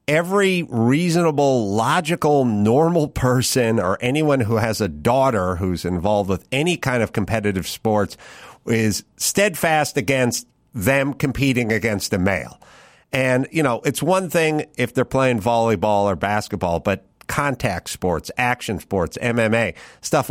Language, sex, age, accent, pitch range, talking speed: English, male, 50-69, American, 115-155 Hz, 135 wpm